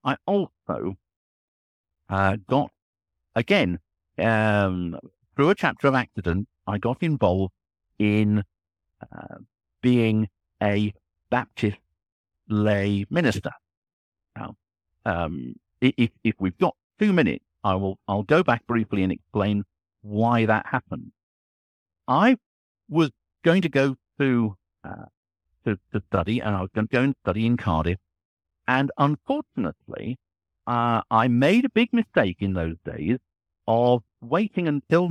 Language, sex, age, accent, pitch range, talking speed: English, male, 50-69, British, 90-125 Hz, 130 wpm